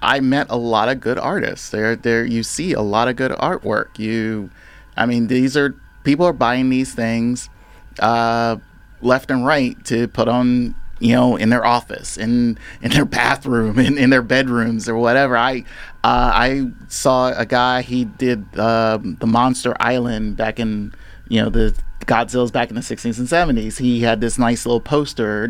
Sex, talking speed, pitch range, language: male, 185 wpm, 115-140 Hz, English